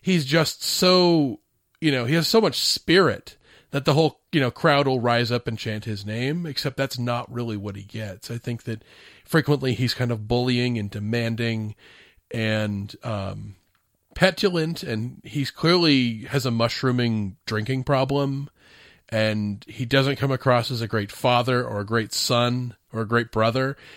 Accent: American